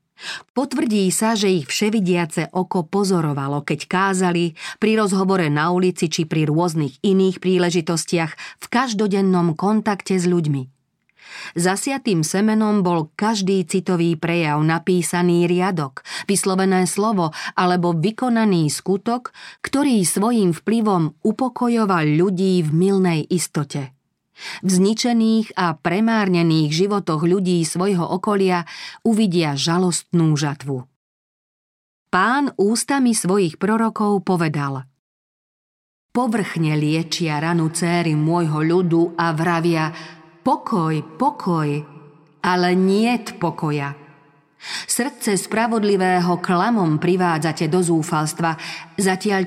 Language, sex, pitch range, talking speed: Slovak, female, 160-200 Hz, 95 wpm